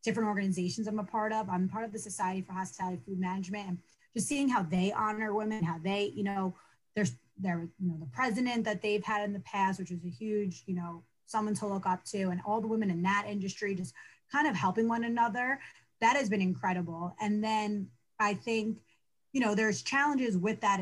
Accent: American